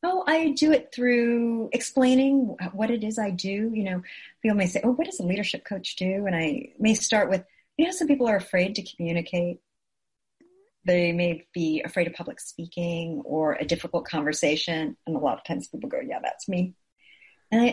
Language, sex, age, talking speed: English, female, 40-59, 200 wpm